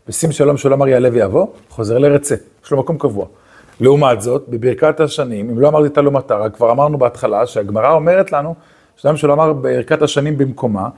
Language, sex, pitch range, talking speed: Hebrew, male, 130-175 Hz, 185 wpm